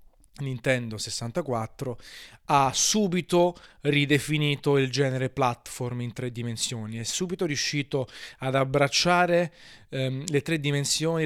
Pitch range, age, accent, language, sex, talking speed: 130-170 Hz, 30-49, native, Italian, male, 105 wpm